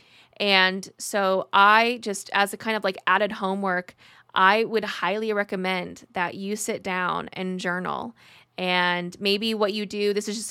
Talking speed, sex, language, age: 165 wpm, female, English, 20-39